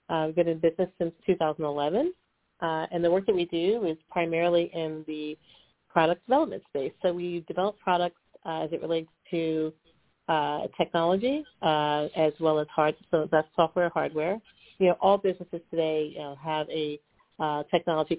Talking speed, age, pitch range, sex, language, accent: 170 wpm, 40-59, 155-180 Hz, female, English, American